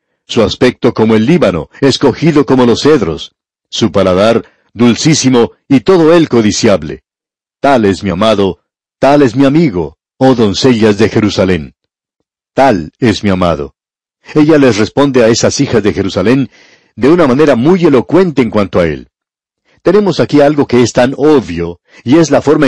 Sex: male